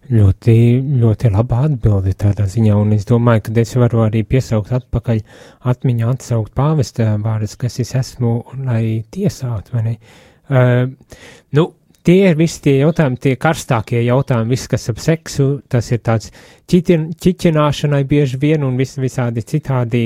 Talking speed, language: 155 wpm, English